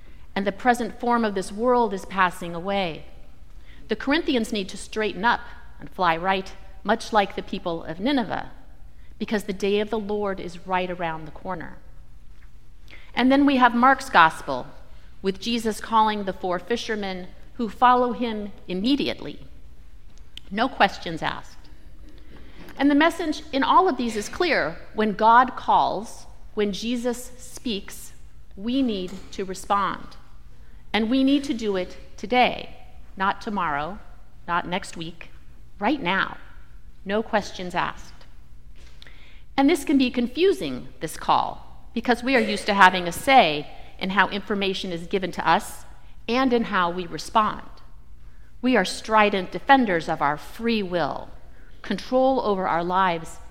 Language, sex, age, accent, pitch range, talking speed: English, female, 40-59, American, 175-240 Hz, 145 wpm